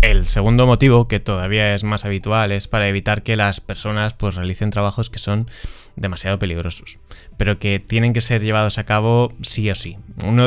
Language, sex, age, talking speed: Spanish, male, 20-39, 190 wpm